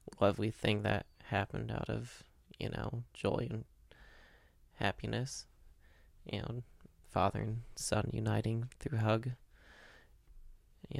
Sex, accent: male, American